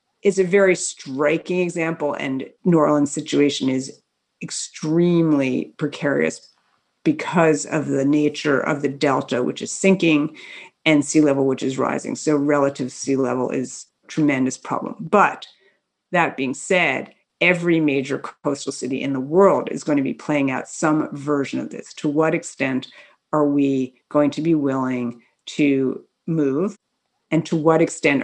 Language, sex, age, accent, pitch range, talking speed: English, female, 50-69, American, 140-165 Hz, 155 wpm